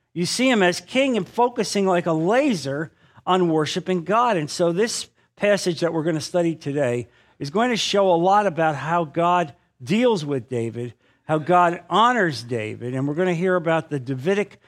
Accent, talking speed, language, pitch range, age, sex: American, 190 wpm, English, 130-180 Hz, 50-69, male